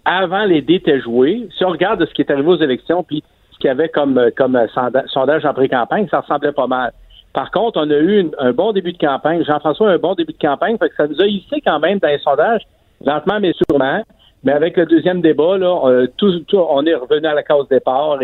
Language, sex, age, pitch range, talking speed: French, male, 50-69, 130-175 Hz, 255 wpm